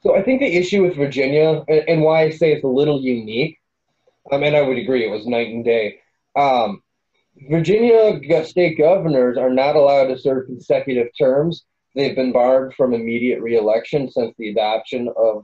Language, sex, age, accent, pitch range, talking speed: English, male, 20-39, American, 120-160 Hz, 180 wpm